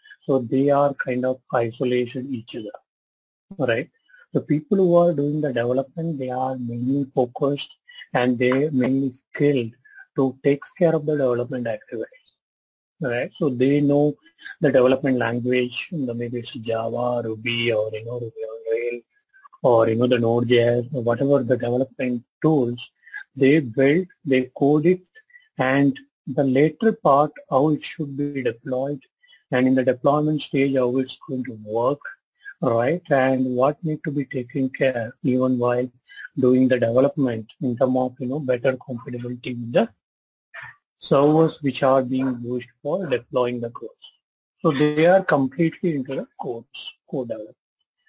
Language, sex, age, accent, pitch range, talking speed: English, male, 30-49, Indian, 125-155 Hz, 155 wpm